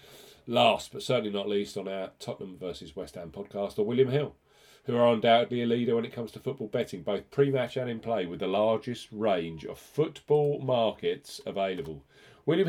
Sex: male